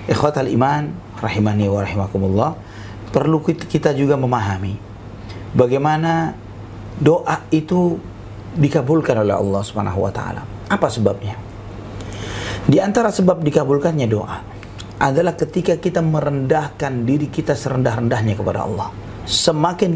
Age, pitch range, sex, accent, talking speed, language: 40-59, 100-135 Hz, male, native, 95 wpm, Indonesian